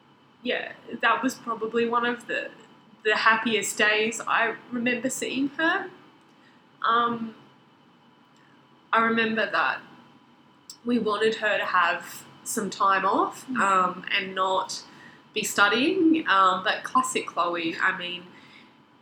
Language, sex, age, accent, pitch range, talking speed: English, female, 20-39, Australian, 190-255 Hz, 115 wpm